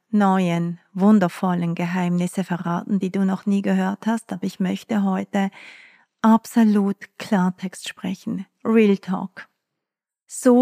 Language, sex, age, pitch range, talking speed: German, female, 40-59, 190-225 Hz, 115 wpm